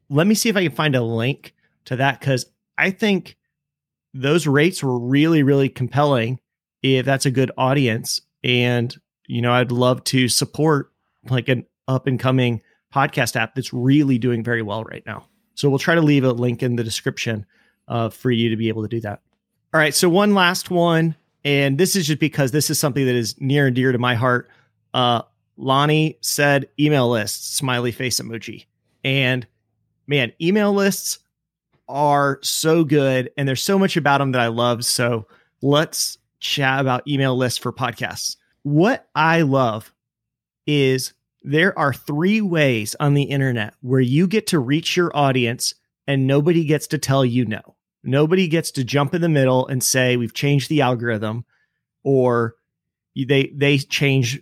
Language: English